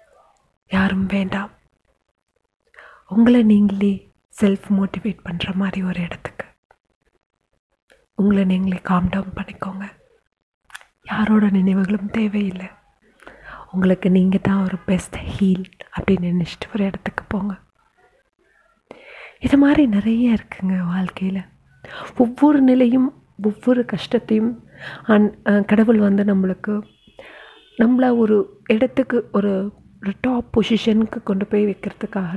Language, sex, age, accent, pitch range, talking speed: Tamil, female, 30-49, native, 190-225 Hz, 95 wpm